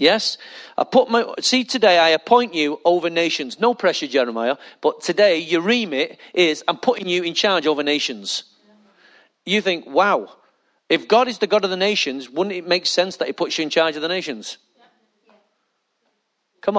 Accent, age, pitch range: British, 40-59, 165-225 Hz